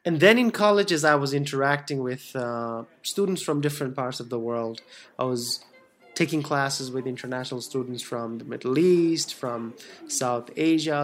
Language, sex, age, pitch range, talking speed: English, male, 20-39, 125-160 Hz, 170 wpm